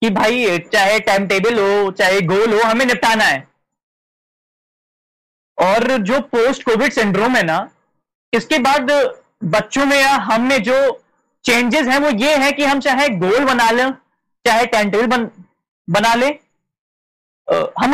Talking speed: 145 wpm